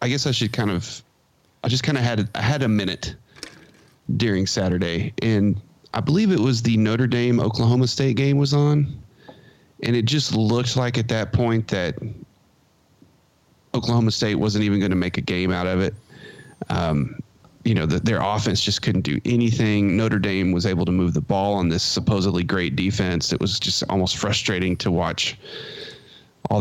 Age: 30-49